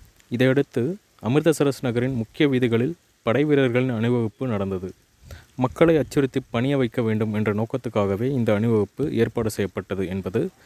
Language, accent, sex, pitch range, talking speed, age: Tamil, native, male, 110-135 Hz, 120 wpm, 30-49